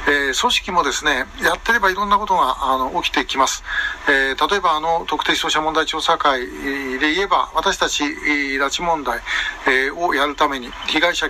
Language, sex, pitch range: Japanese, male, 140-195 Hz